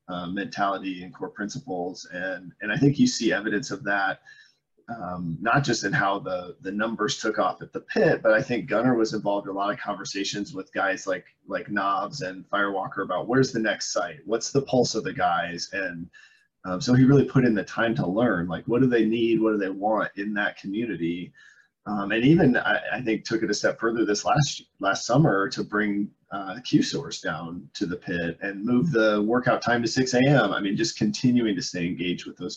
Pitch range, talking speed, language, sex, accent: 95-120 Hz, 220 wpm, English, male, American